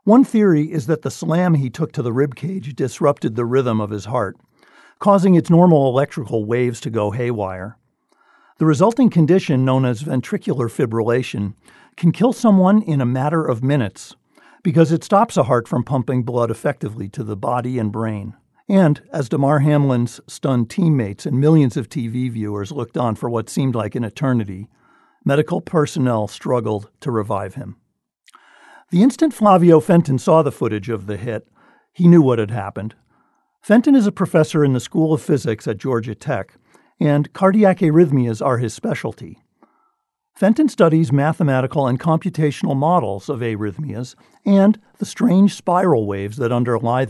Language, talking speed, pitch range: English, 160 wpm, 120-175 Hz